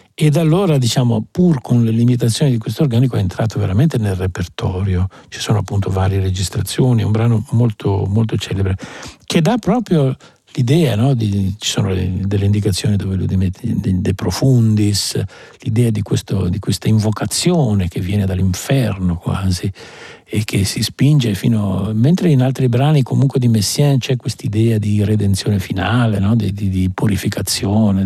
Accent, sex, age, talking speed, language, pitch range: native, male, 50-69, 165 wpm, Italian, 100-130 Hz